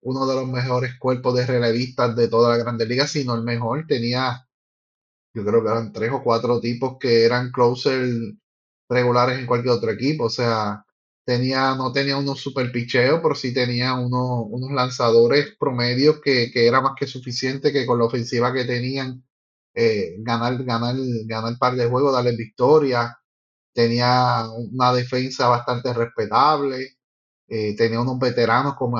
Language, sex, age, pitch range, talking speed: Spanish, male, 30-49, 120-135 Hz, 165 wpm